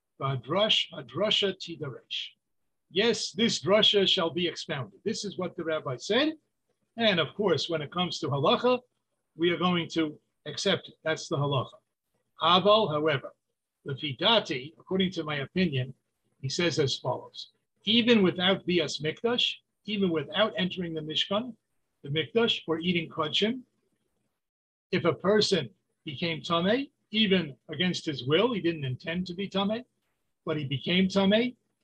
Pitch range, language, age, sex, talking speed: 155-200 Hz, English, 50-69, male, 140 wpm